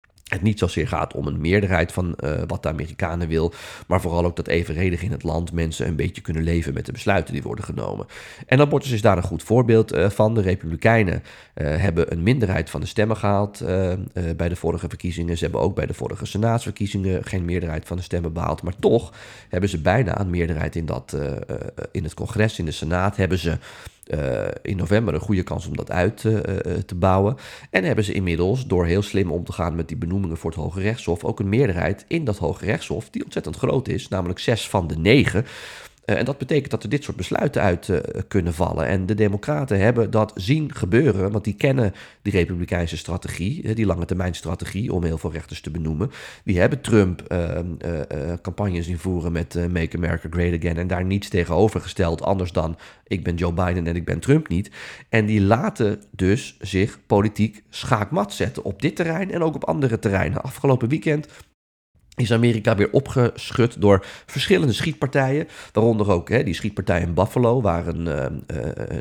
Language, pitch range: Dutch, 85-110 Hz